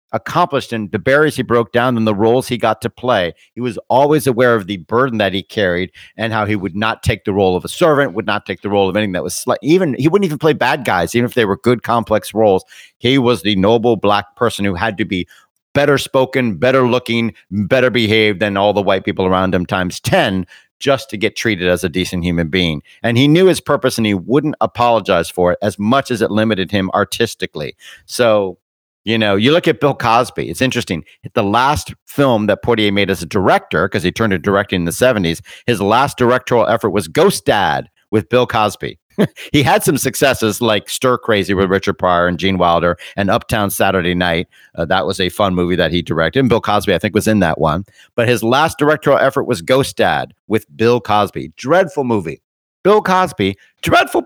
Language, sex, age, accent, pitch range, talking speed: English, male, 50-69, American, 95-125 Hz, 220 wpm